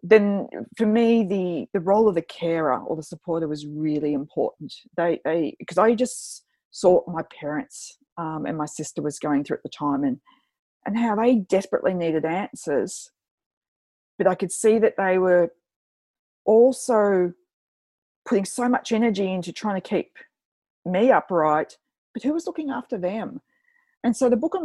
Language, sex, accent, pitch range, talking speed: English, female, Australian, 170-240 Hz, 170 wpm